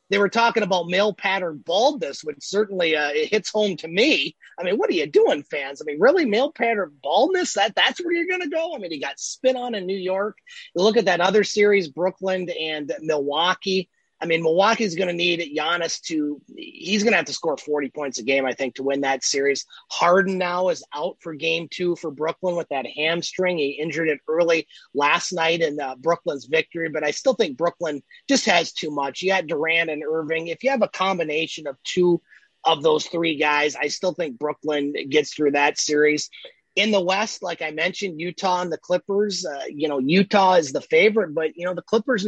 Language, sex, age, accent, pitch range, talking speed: English, male, 30-49, American, 155-205 Hz, 220 wpm